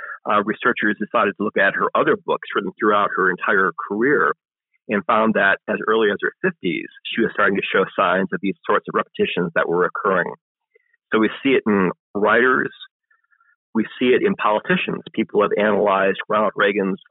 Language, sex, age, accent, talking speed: English, male, 40-59, American, 180 wpm